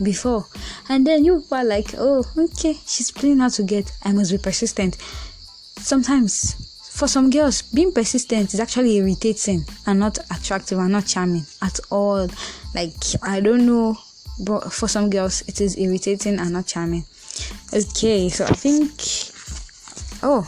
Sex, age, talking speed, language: female, 10-29, 155 wpm, English